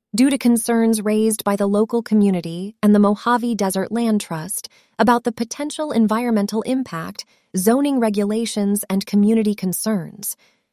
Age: 30-49